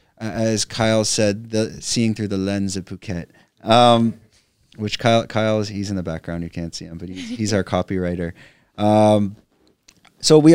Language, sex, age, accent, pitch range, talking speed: English, male, 30-49, American, 105-135 Hz, 165 wpm